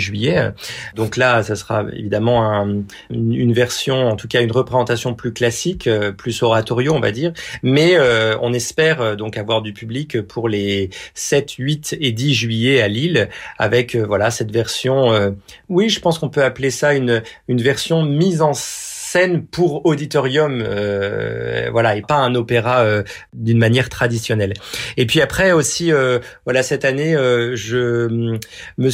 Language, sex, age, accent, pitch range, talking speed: French, male, 40-59, French, 115-140 Hz, 170 wpm